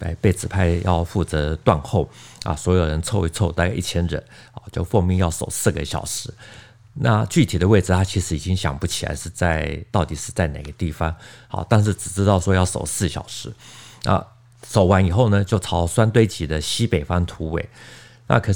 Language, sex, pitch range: Chinese, male, 85-115 Hz